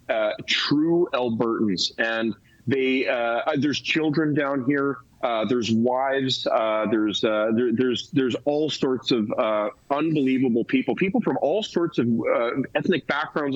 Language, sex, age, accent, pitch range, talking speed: English, male, 30-49, American, 110-135 Hz, 145 wpm